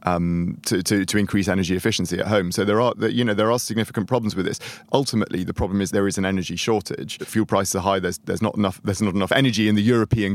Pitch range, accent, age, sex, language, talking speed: 95-110 Hz, British, 30-49, male, English, 255 wpm